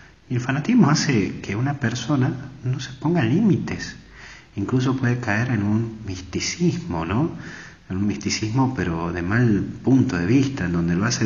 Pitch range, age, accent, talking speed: 90-130 Hz, 40-59, Argentinian, 165 wpm